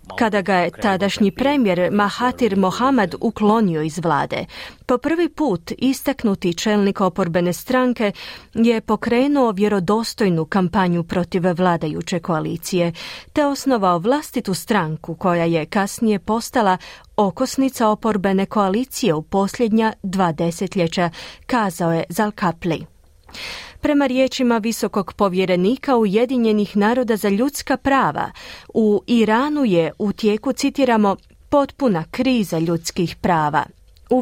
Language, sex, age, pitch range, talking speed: Croatian, female, 30-49, 185-245 Hz, 110 wpm